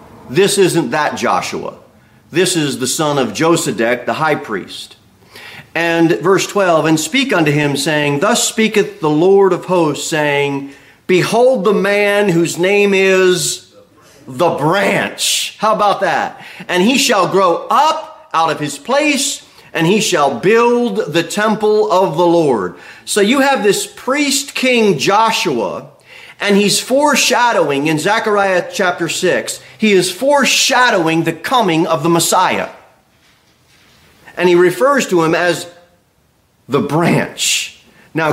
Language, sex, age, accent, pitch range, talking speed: English, male, 40-59, American, 155-220 Hz, 140 wpm